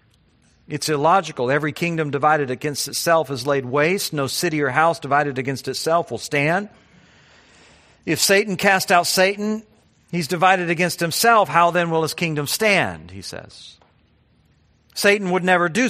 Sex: male